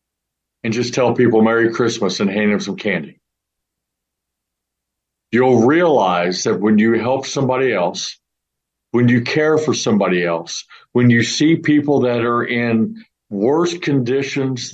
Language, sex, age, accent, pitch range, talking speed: English, male, 50-69, American, 105-135 Hz, 140 wpm